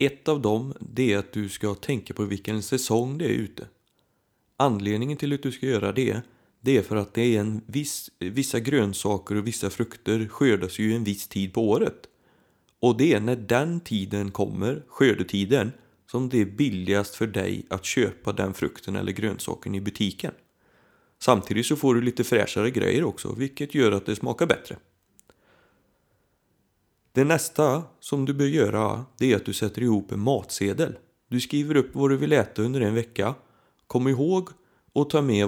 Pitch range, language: 100-130 Hz, Swedish